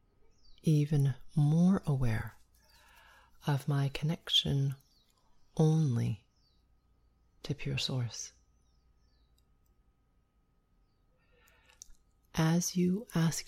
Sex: female